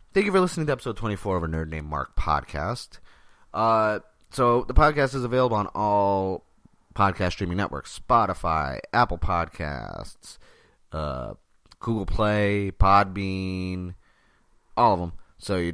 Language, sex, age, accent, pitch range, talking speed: English, male, 30-49, American, 85-110 Hz, 135 wpm